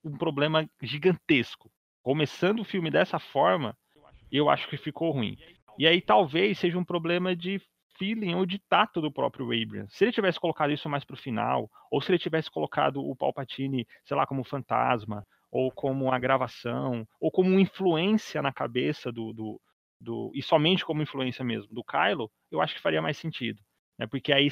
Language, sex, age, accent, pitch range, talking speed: Portuguese, male, 30-49, Brazilian, 130-180 Hz, 180 wpm